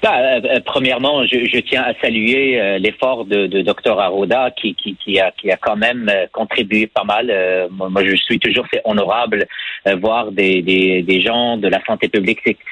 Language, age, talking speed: French, 40-59, 210 wpm